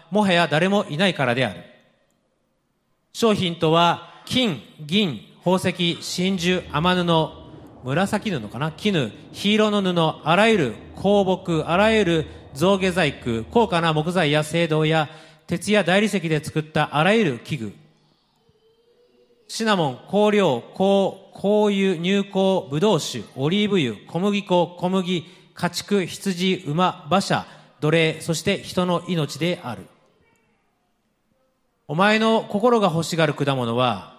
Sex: male